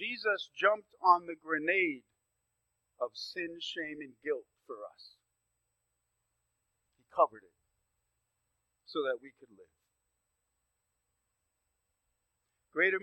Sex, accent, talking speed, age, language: male, American, 95 wpm, 40-59, English